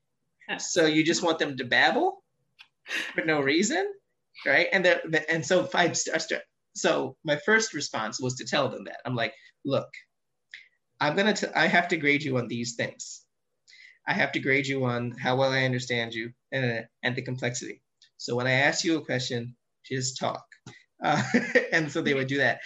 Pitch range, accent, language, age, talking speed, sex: 125-165 Hz, American, English, 30-49, 190 wpm, male